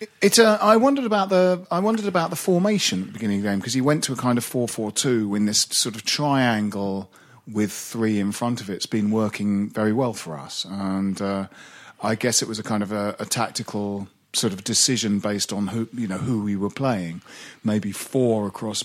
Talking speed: 230 wpm